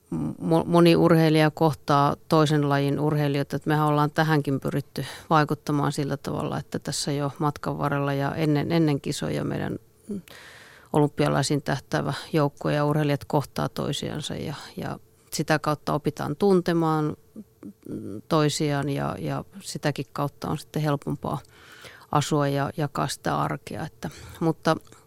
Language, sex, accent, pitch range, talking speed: Finnish, female, native, 145-165 Hz, 125 wpm